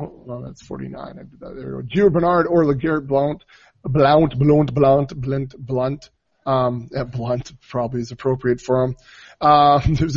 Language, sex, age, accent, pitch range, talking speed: English, male, 20-39, American, 130-170 Hz, 160 wpm